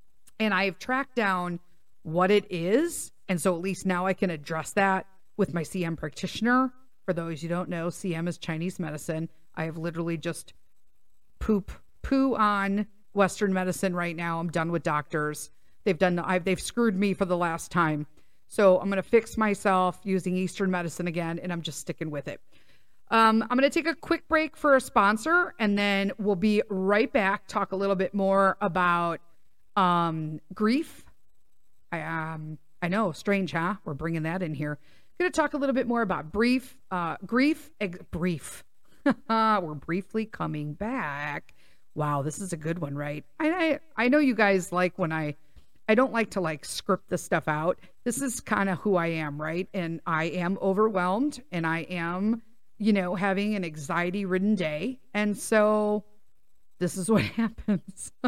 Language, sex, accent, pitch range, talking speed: English, female, American, 170-215 Hz, 185 wpm